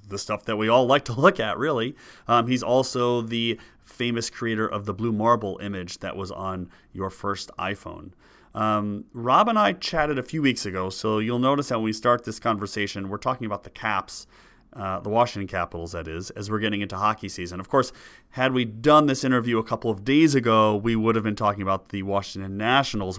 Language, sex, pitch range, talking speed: English, male, 105-130 Hz, 215 wpm